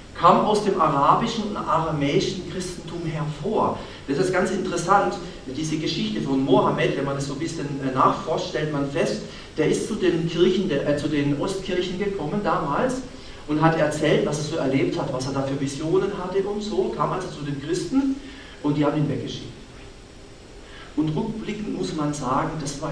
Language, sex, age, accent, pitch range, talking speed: German, male, 40-59, German, 135-185 Hz, 185 wpm